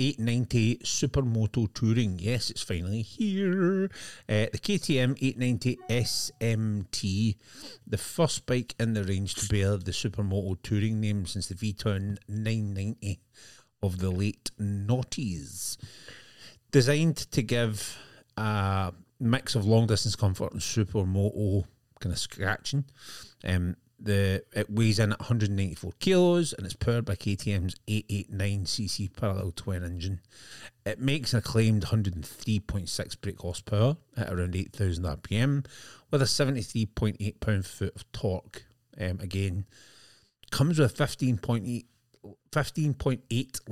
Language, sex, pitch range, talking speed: English, male, 100-120 Hz, 120 wpm